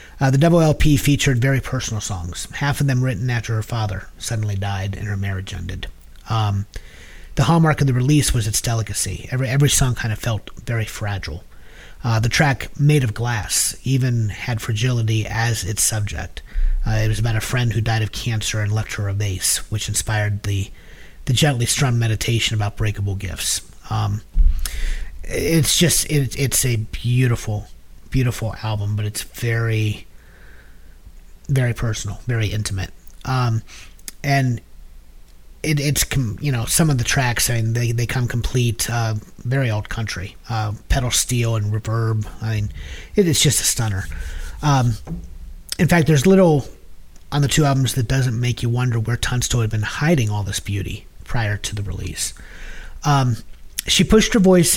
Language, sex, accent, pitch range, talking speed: English, male, American, 100-125 Hz, 170 wpm